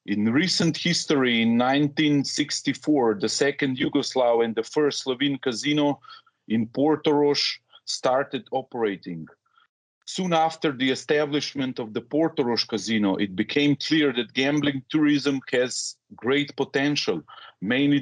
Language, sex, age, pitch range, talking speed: English, male, 40-59, 130-155 Hz, 115 wpm